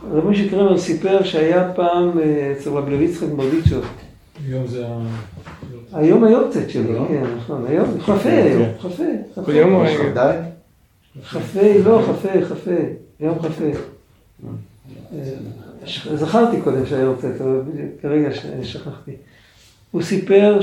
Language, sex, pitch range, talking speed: Hebrew, male, 135-180 Hz, 110 wpm